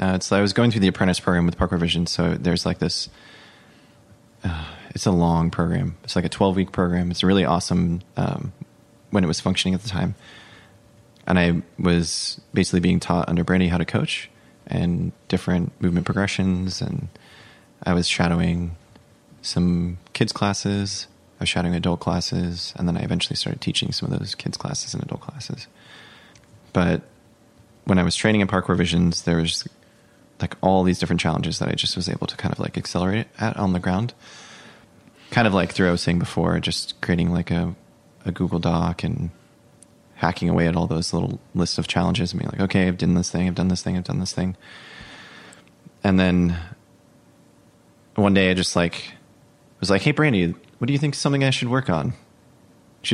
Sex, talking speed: male, 195 wpm